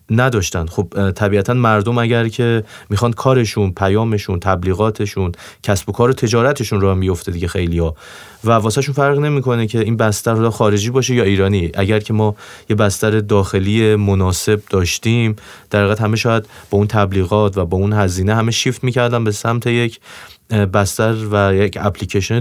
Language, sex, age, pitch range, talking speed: Persian, male, 30-49, 95-115 Hz, 165 wpm